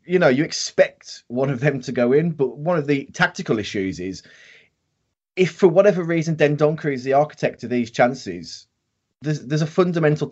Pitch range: 120-150 Hz